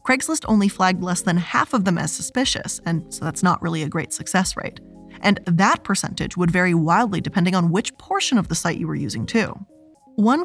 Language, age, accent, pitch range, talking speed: English, 20-39, American, 175-230 Hz, 210 wpm